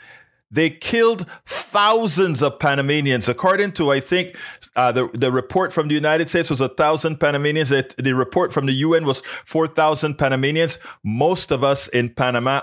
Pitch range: 120-160 Hz